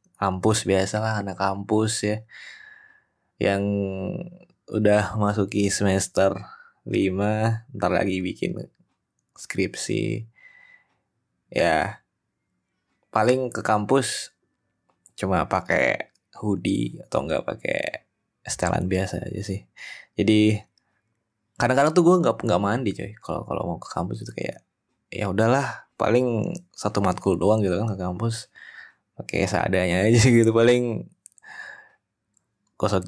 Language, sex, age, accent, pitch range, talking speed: Indonesian, male, 20-39, native, 95-115 Hz, 110 wpm